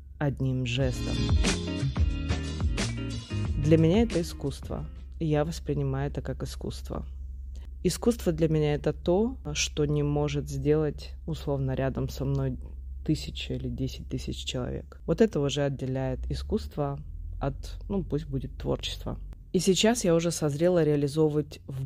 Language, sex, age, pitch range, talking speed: Russian, female, 20-39, 130-150 Hz, 130 wpm